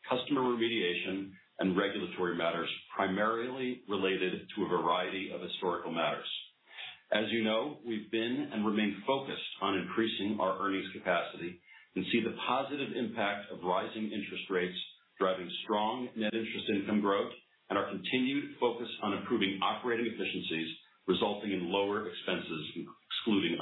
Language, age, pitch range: English, 50-69, 95-115 Hz